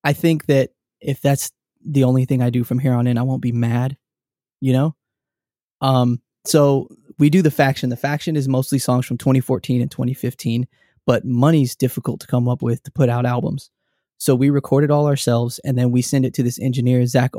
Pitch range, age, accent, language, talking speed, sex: 125-140 Hz, 20-39, American, English, 210 wpm, male